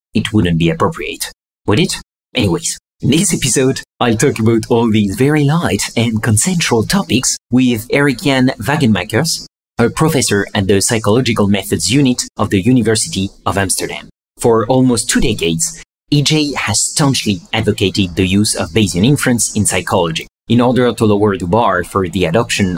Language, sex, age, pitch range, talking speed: English, male, 30-49, 100-130 Hz, 155 wpm